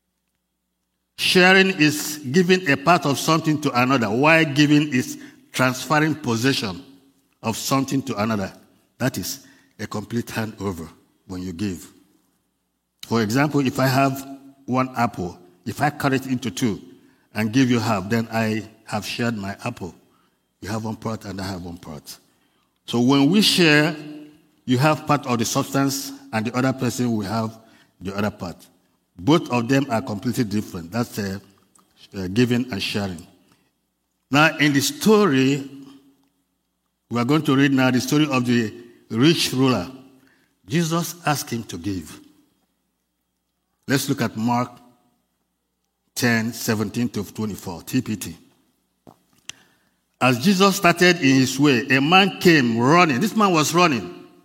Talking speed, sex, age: 145 wpm, male, 50-69